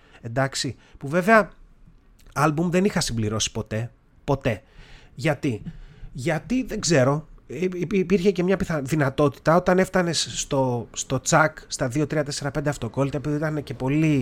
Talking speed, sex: 135 wpm, male